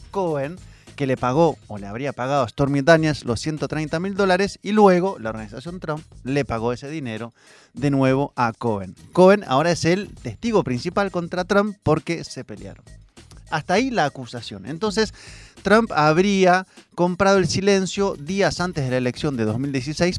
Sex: male